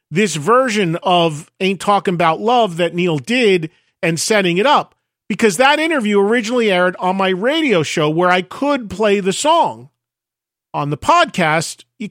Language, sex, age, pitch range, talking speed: English, male, 40-59, 155-215 Hz, 165 wpm